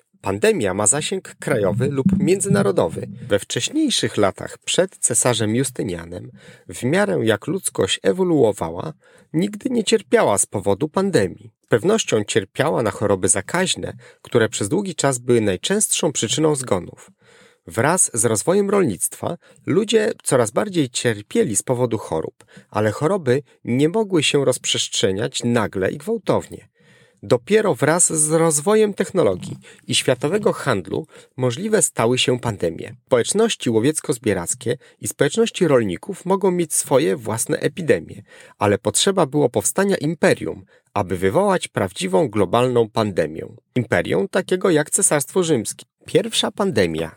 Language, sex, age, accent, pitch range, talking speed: Polish, male, 40-59, native, 120-195 Hz, 120 wpm